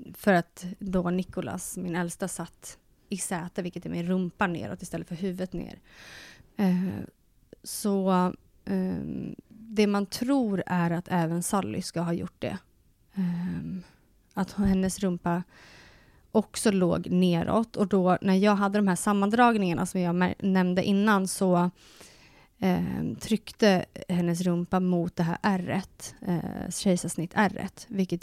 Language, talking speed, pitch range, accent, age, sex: Swedish, 125 wpm, 175-200 Hz, native, 30-49, female